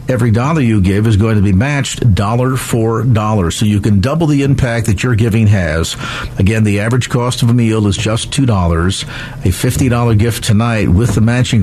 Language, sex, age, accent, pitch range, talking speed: English, male, 50-69, American, 110-140 Hz, 205 wpm